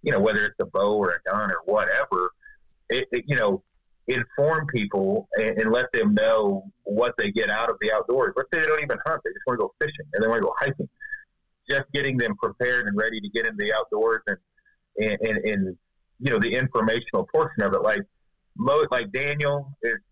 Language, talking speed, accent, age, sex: English, 220 wpm, American, 40-59, male